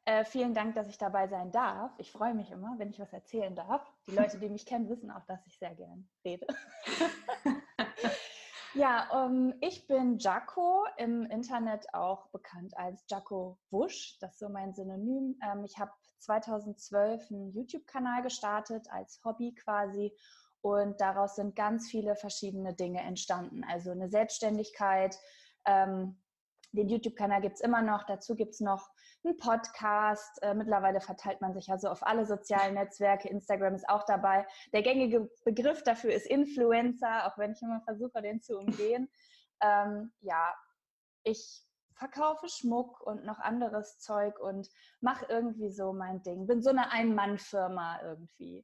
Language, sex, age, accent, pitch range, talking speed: German, female, 20-39, German, 195-240 Hz, 160 wpm